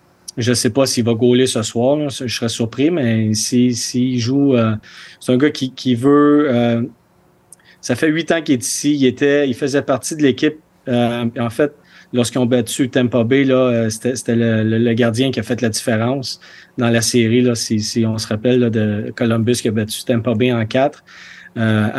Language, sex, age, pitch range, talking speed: French, male, 40-59, 120-140 Hz, 220 wpm